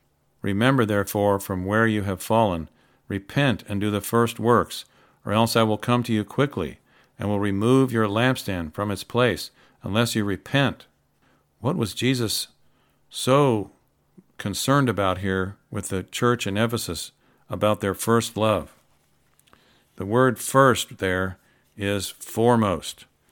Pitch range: 100-120 Hz